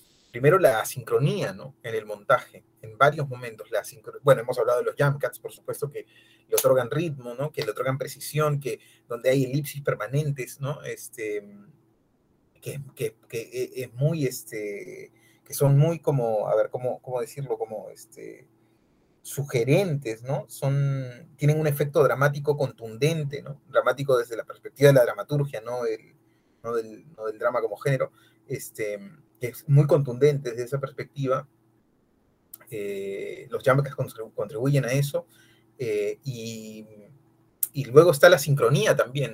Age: 30-49